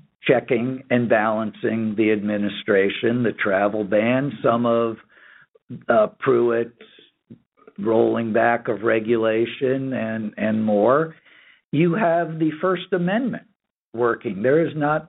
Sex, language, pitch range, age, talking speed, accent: male, English, 115-155 Hz, 60-79, 110 wpm, American